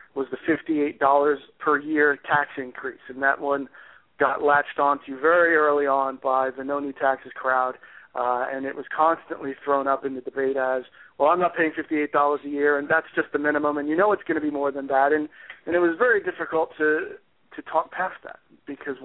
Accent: American